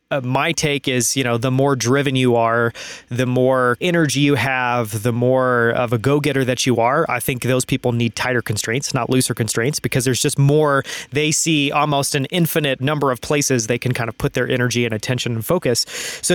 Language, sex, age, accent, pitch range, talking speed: English, male, 20-39, American, 120-145 Hz, 210 wpm